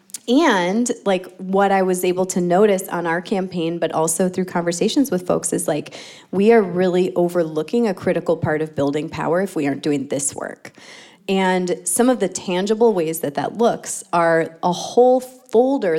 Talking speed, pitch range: 180 wpm, 175-215 Hz